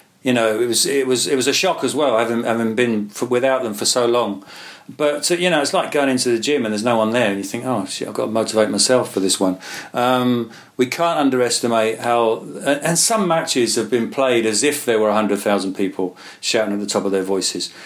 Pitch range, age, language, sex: 105-135 Hz, 40-59, English, male